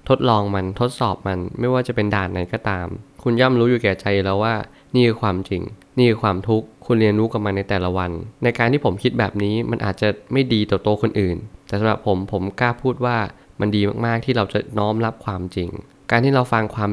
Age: 20-39